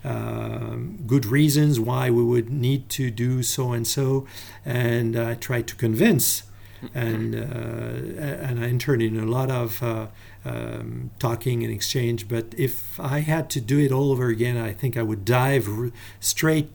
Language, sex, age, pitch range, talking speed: English, male, 50-69, 115-140 Hz, 170 wpm